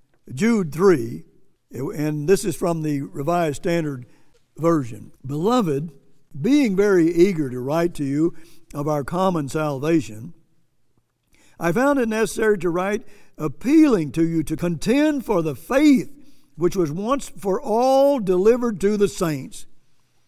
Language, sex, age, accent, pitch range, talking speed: English, male, 60-79, American, 165-235 Hz, 135 wpm